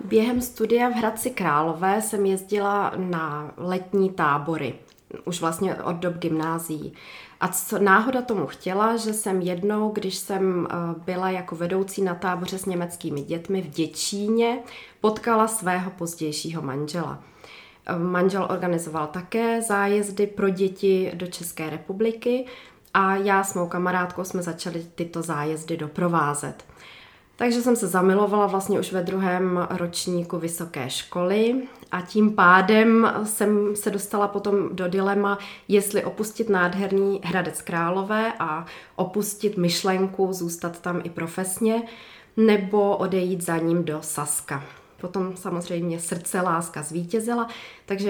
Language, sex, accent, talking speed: Czech, female, native, 125 wpm